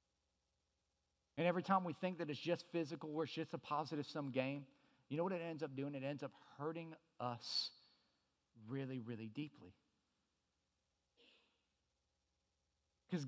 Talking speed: 145 wpm